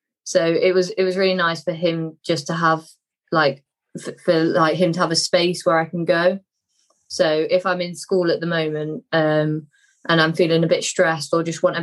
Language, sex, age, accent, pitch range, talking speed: English, female, 20-39, British, 155-175 Hz, 225 wpm